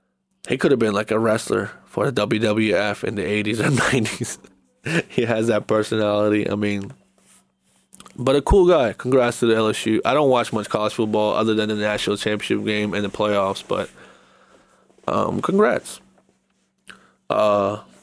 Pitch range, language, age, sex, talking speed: 105-130 Hz, English, 20-39, male, 160 wpm